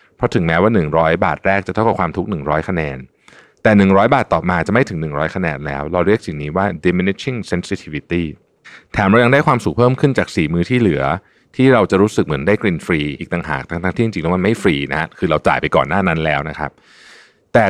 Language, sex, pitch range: Thai, male, 80-120 Hz